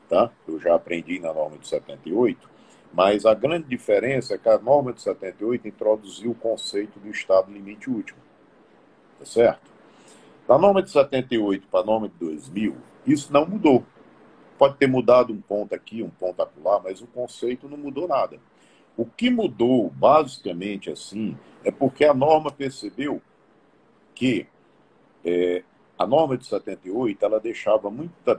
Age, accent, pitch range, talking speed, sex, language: 50-69, Brazilian, 110-170 Hz, 150 wpm, male, Portuguese